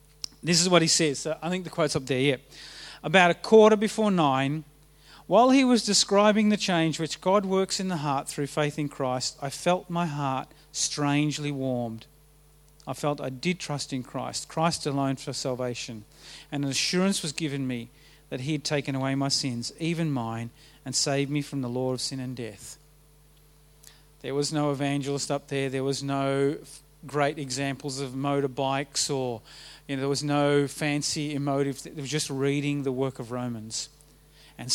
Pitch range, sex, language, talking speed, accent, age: 140-165 Hz, male, English, 185 wpm, Australian, 40-59